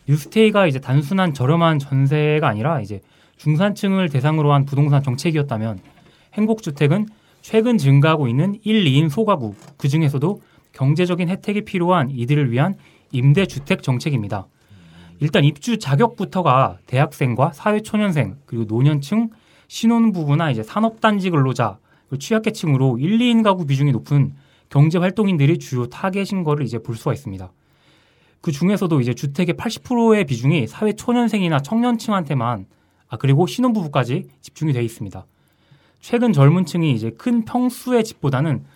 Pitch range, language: 135-195 Hz, Korean